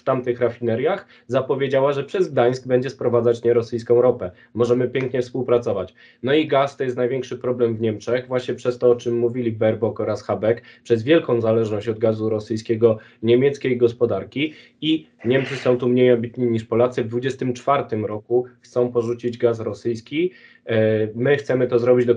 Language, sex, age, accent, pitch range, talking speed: Polish, male, 20-39, native, 120-130 Hz, 160 wpm